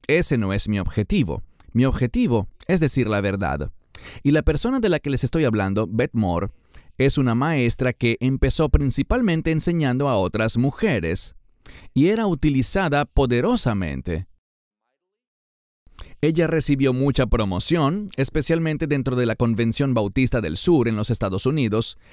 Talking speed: 140 wpm